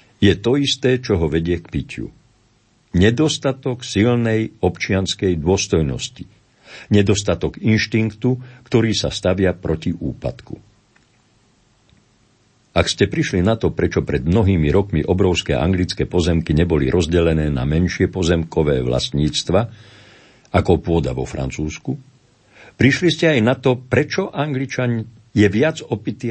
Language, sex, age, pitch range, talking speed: Slovak, male, 50-69, 85-120 Hz, 115 wpm